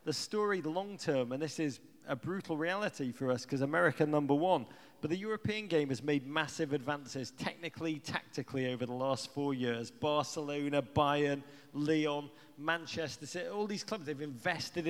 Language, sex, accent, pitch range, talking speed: English, male, British, 125-170 Hz, 165 wpm